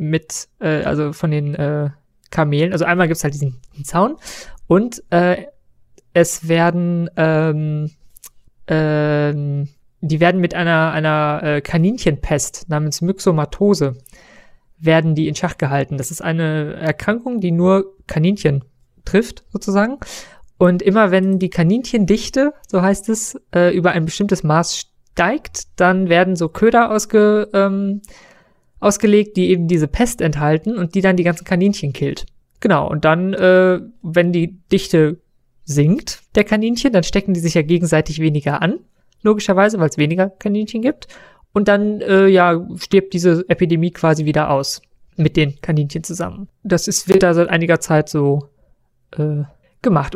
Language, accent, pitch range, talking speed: German, German, 155-195 Hz, 150 wpm